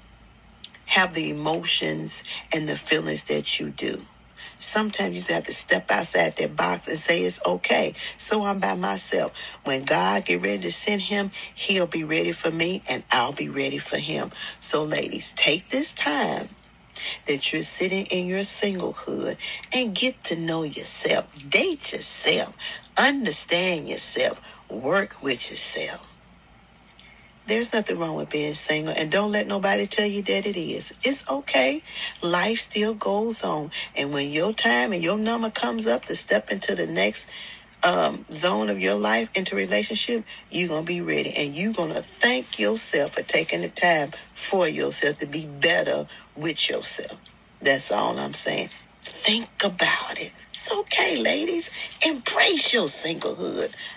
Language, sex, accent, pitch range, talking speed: English, female, American, 145-215 Hz, 160 wpm